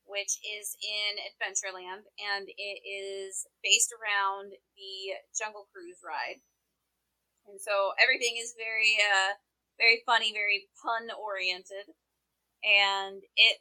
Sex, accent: female, American